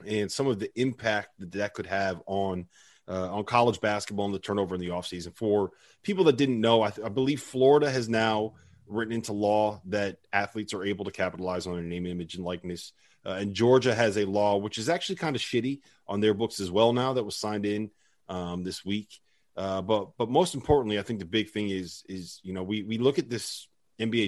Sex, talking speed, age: male, 225 wpm, 30-49